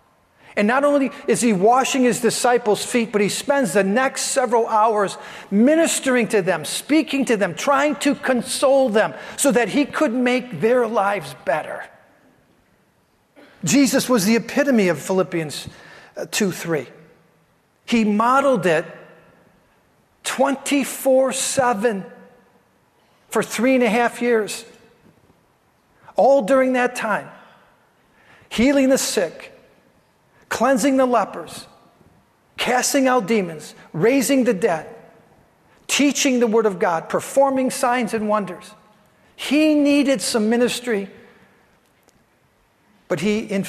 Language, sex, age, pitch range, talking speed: English, male, 50-69, 185-260 Hz, 115 wpm